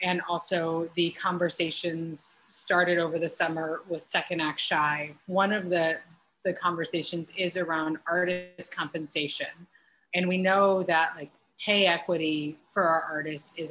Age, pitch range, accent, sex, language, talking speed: 30-49, 165-195 Hz, American, female, English, 140 wpm